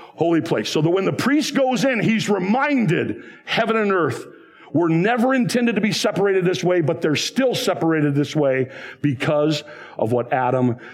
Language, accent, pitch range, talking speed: English, American, 125-170 Hz, 175 wpm